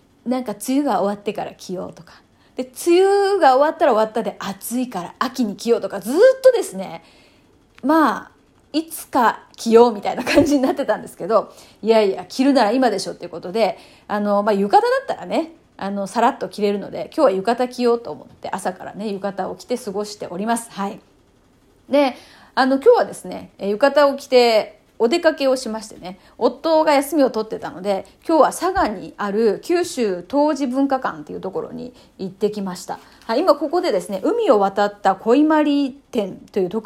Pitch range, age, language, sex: 210-295 Hz, 30-49, Japanese, female